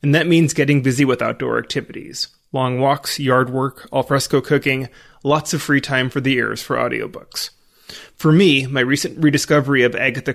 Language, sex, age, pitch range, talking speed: English, male, 30-49, 130-150 Hz, 175 wpm